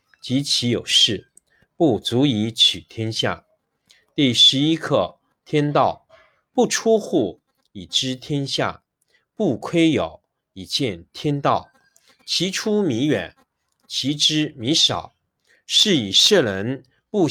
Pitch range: 110-155 Hz